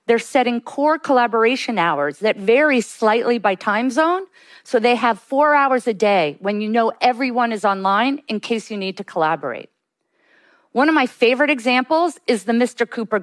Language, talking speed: English, 175 wpm